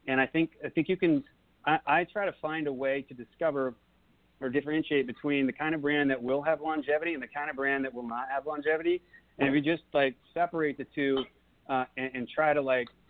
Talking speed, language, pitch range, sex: 235 wpm, English, 125-150 Hz, male